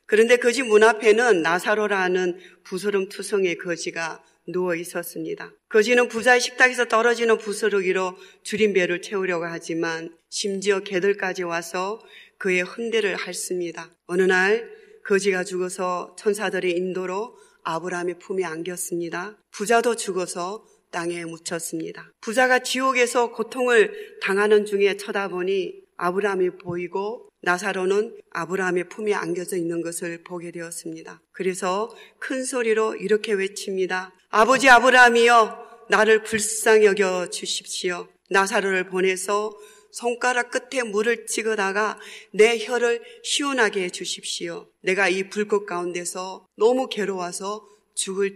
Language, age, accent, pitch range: Korean, 40-59, native, 180-220 Hz